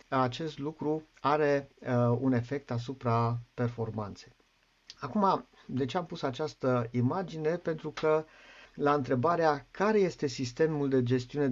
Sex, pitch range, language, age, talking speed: male, 115-140 Hz, Romanian, 50-69, 120 wpm